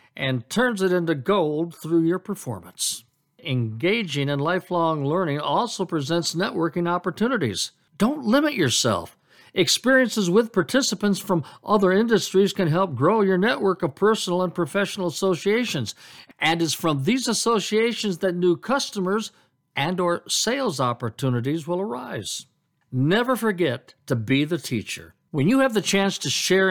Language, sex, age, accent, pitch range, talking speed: English, male, 50-69, American, 145-200 Hz, 140 wpm